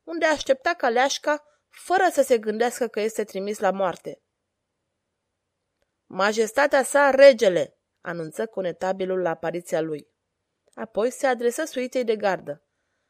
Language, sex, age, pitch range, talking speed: Romanian, female, 20-39, 195-270 Hz, 120 wpm